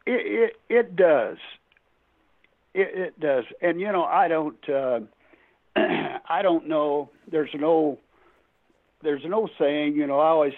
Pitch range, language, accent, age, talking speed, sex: 140-210 Hz, English, American, 60-79, 145 wpm, male